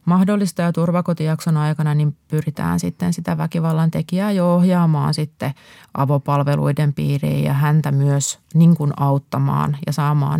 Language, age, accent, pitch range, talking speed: Finnish, 30-49, native, 145-175 Hz, 125 wpm